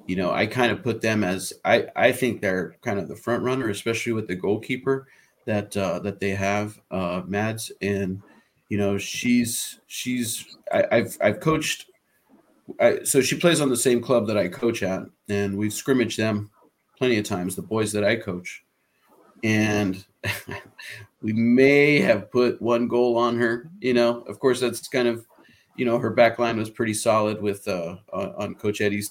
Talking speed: 185 wpm